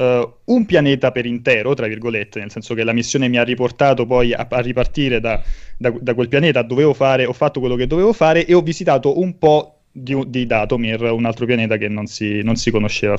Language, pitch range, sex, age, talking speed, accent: Italian, 115-140 Hz, male, 20-39, 215 wpm, native